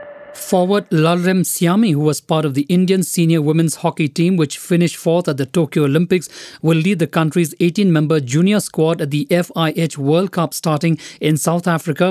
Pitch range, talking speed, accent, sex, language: 155-180 Hz, 185 wpm, Indian, male, English